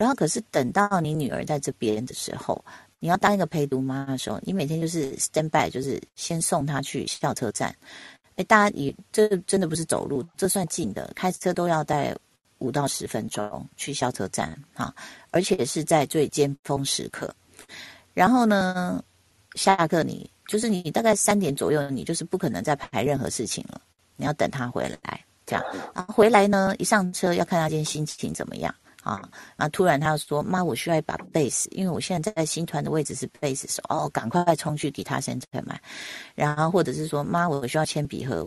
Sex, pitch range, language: female, 140-185 Hz, Chinese